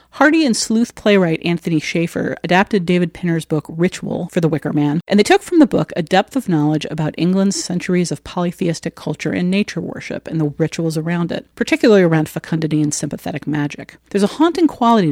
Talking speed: 195 wpm